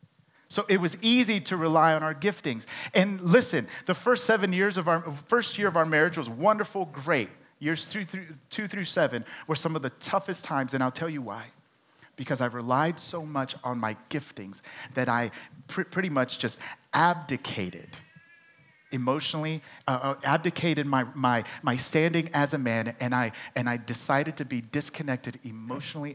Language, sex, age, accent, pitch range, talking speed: English, male, 40-59, American, 130-170 Hz, 175 wpm